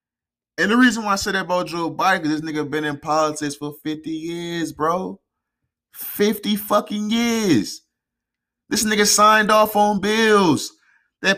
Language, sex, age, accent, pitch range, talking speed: English, male, 20-39, American, 160-265 Hz, 160 wpm